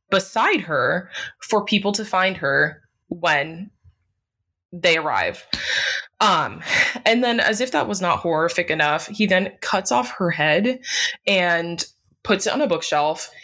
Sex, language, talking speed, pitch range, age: female, English, 145 wpm, 155-190 Hz, 20-39